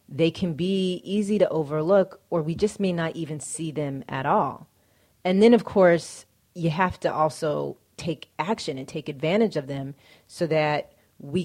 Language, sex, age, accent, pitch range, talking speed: English, female, 30-49, American, 145-190 Hz, 180 wpm